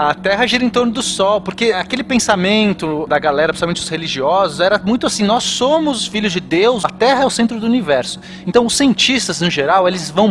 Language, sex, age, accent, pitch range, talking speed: Portuguese, male, 30-49, Brazilian, 180-240 Hz, 215 wpm